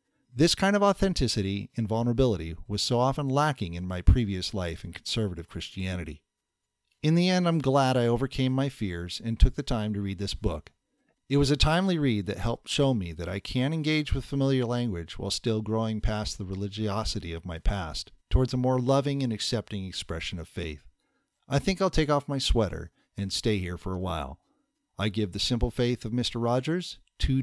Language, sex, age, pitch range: English, male, 40-59, 110-165 Hz